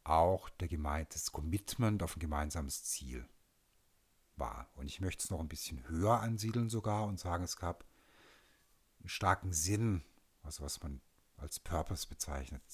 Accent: German